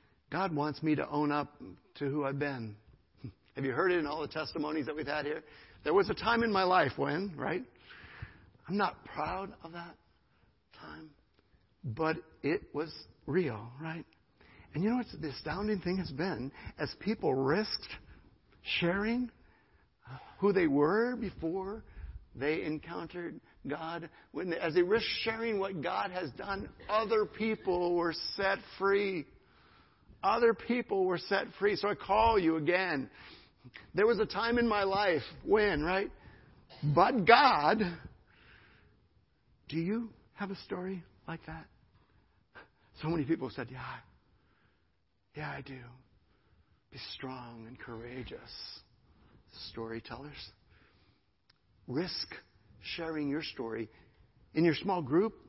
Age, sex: 60-79, male